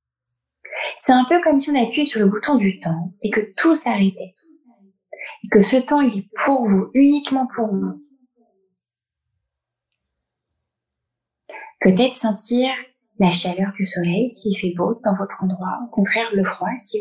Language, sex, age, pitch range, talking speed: French, female, 20-39, 195-265 Hz, 155 wpm